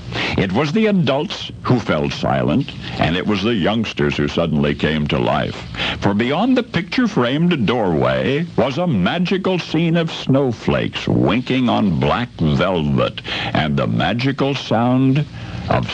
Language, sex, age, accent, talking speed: English, male, 60-79, American, 140 wpm